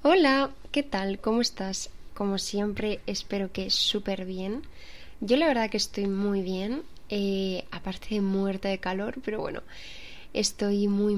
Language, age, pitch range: Spanish, 20-39, 195-225 Hz